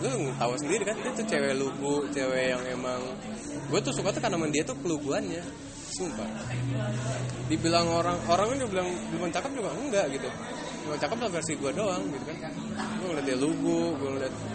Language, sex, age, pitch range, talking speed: English, male, 20-39, 125-165 Hz, 180 wpm